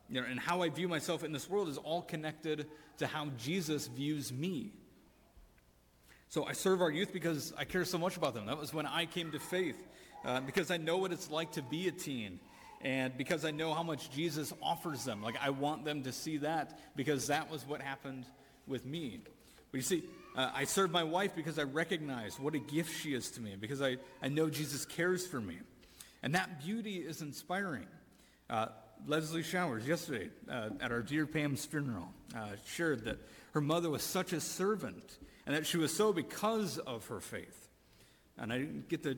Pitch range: 130-165 Hz